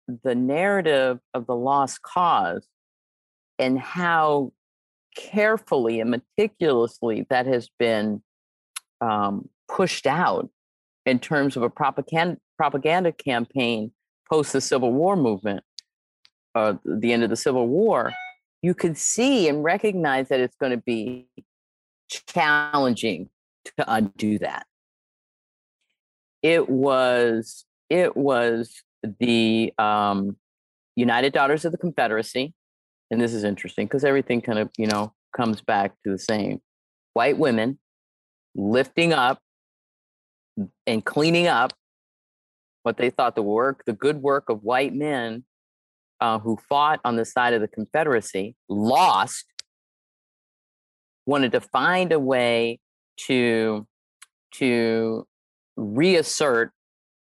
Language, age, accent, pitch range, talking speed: English, 50-69, American, 105-140 Hz, 115 wpm